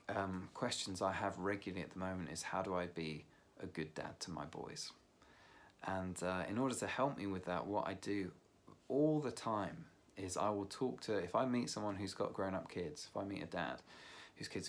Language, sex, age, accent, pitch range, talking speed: English, male, 30-49, British, 90-105 Hz, 220 wpm